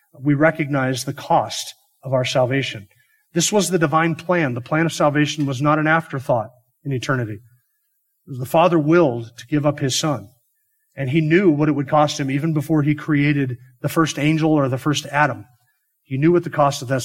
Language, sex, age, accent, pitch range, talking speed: English, male, 40-59, American, 135-155 Hz, 195 wpm